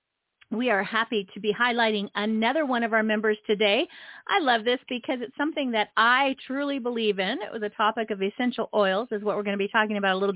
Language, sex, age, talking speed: English, female, 40-59, 230 wpm